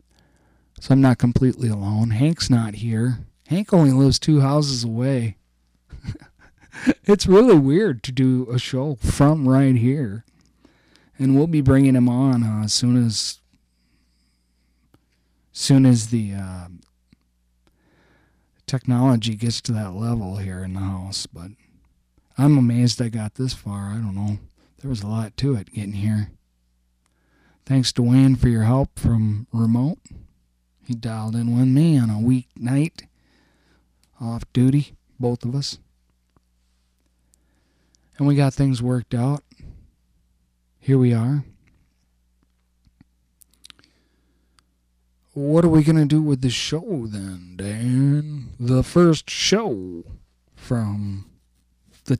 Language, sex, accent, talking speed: English, male, American, 130 wpm